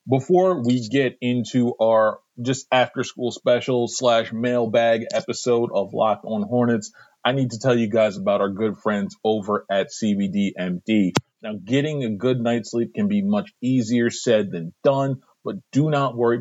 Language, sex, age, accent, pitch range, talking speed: English, male, 40-59, American, 110-150 Hz, 165 wpm